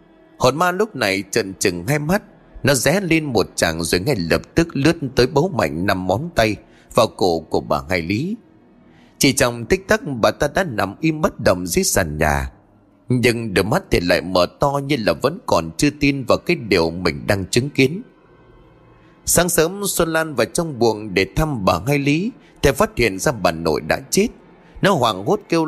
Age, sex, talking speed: 30-49, male, 205 wpm